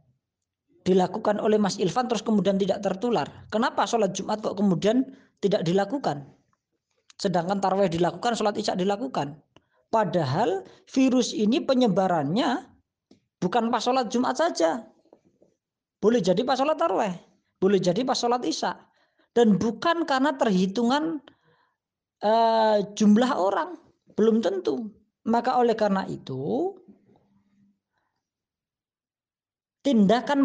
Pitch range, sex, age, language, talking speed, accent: 175-235 Hz, female, 20-39, Indonesian, 105 wpm, native